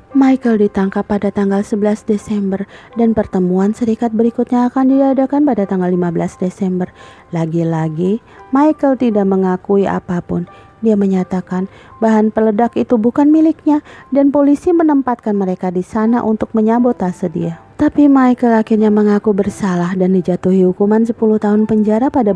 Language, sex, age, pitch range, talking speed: Indonesian, female, 30-49, 190-230 Hz, 130 wpm